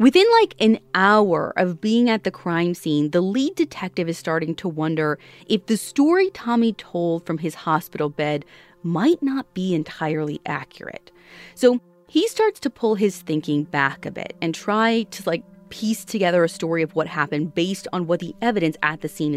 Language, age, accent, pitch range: English, 30-49, American, 160-235 Hz